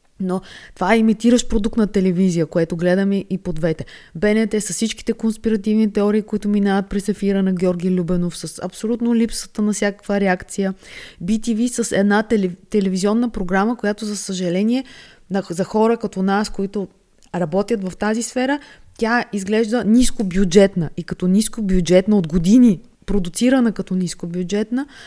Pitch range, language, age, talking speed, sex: 185-220 Hz, Bulgarian, 20-39, 150 wpm, female